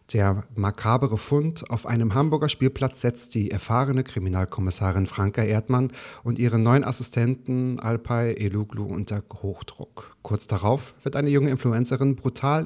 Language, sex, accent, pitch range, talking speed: German, male, German, 105-130 Hz, 135 wpm